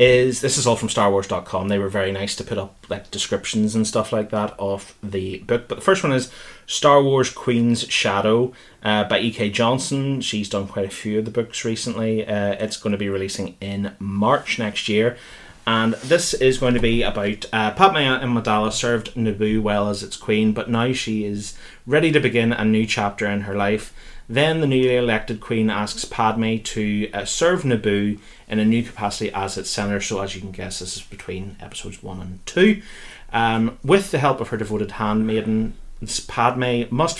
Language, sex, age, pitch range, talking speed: English, male, 30-49, 100-120 Hz, 200 wpm